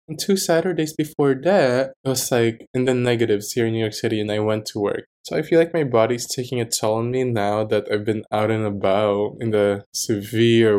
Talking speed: 230 wpm